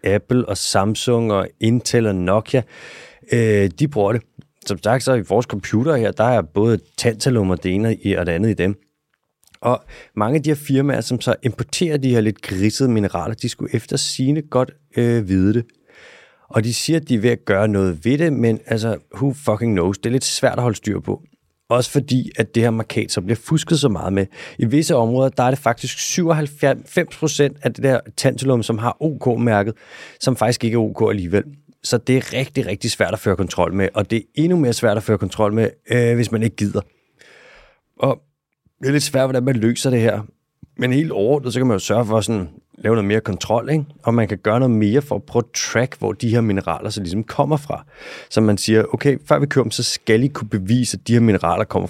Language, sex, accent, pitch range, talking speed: Danish, male, native, 105-130 Hz, 225 wpm